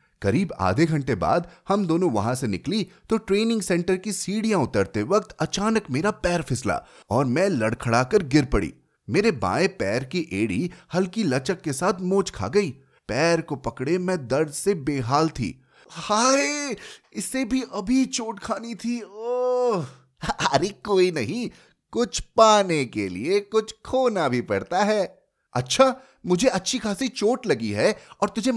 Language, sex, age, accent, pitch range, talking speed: Hindi, male, 30-49, native, 145-220 Hz, 155 wpm